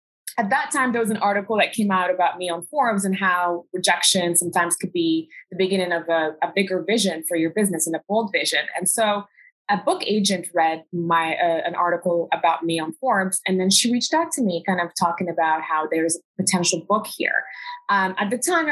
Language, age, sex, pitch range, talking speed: English, 20-39, female, 175-230 Hz, 220 wpm